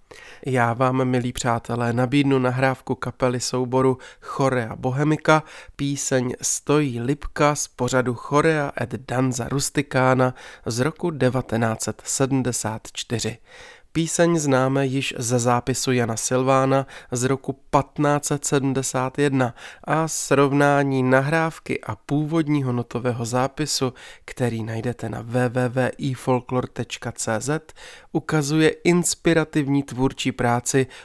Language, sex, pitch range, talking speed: Czech, male, 120-145 Hz, 90 wpm